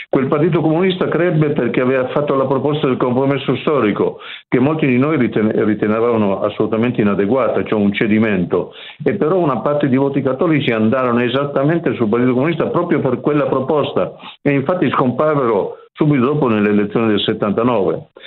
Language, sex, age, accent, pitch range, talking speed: Italian, male, 50-69, native, 115-145 Hz, 155 wpm